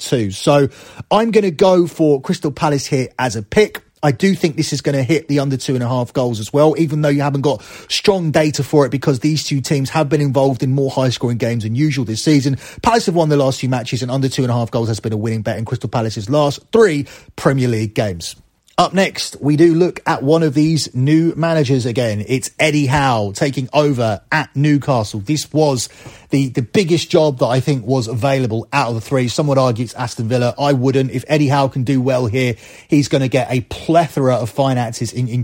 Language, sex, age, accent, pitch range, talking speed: English, male, 30-49, British, 125-155 Hz, 235 wpm